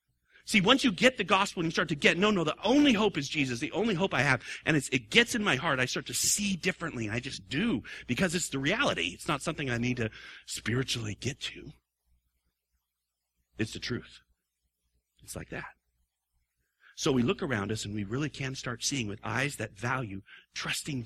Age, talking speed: 40-59, 210 wpm